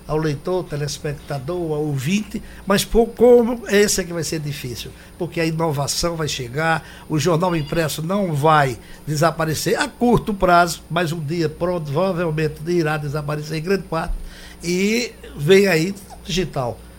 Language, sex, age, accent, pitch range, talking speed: Portuguese, male, 60-79, Brazilian, 155-200 Hz, 150 wpm